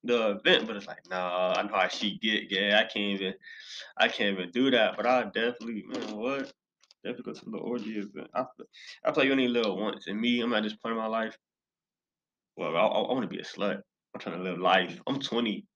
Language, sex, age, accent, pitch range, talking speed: English, male, 20-39, American, 105-135 Hz, 230 wpm